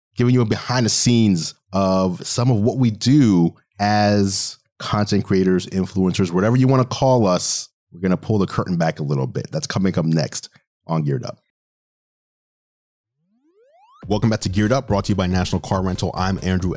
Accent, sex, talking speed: American, male, 185 wpm